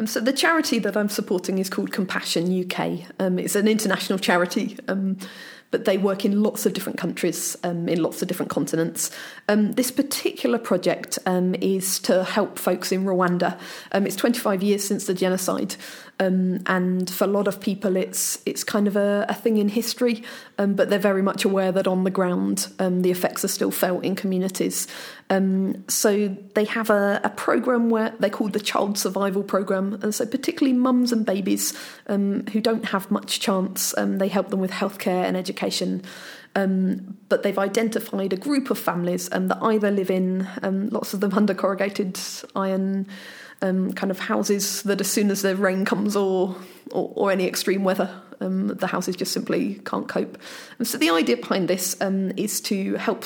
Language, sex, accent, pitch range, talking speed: English, female, British, 185-220 Hz, 190 wpm